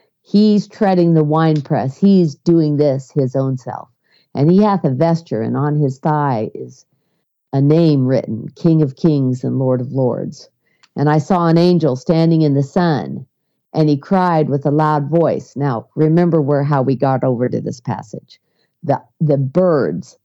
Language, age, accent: English, 50-69, American